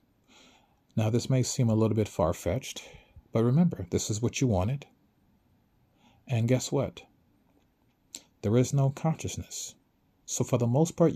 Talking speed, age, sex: 145 wpm, 40-59, male